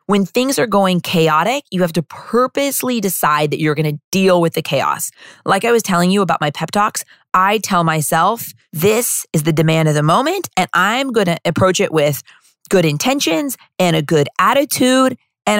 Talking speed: 195 wpm